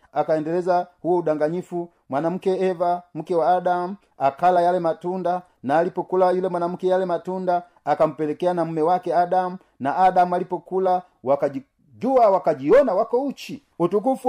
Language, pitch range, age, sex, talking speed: Swahili, 165-205 Hz, 40-59, male, 125 wpm